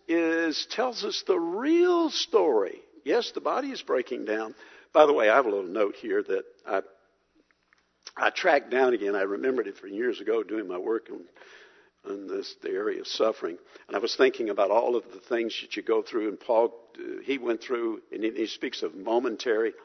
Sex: male